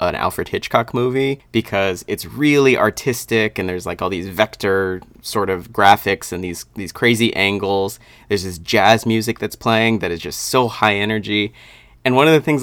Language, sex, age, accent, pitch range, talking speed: English, male, 30-49, American, 100-120 Hz, 185 wpm